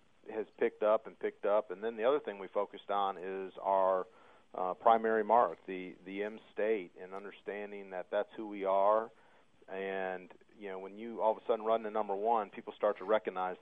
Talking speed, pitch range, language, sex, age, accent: 205 wpm, 95-105 Hz, English, male, 40-59, American